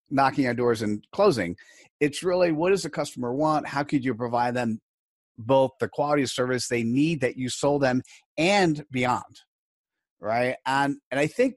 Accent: American